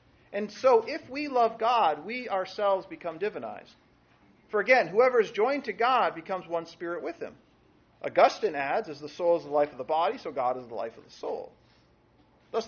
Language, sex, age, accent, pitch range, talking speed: English, male, 40-59, American, 145-220 Hz, 200 wpm